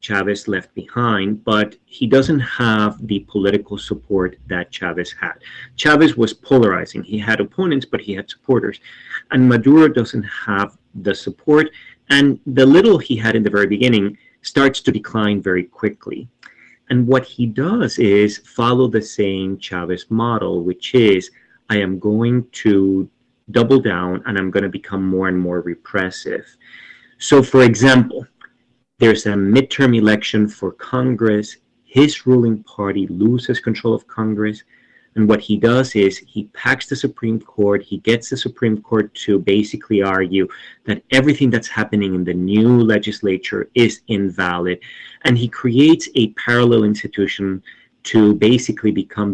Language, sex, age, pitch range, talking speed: English, male, 30-49, 100-125 Hz, 150 wpm